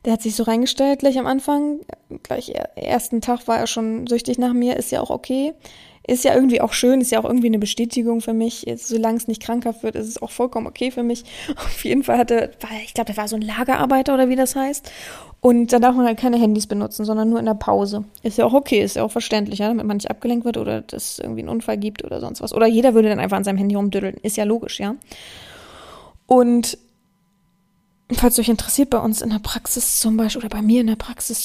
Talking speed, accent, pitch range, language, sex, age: 250 wpm, German, 215-250 Hz, German, female, 20-39